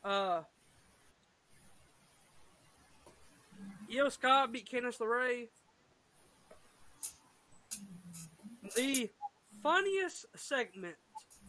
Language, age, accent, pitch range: English, 20-39, American, 195-265 Hz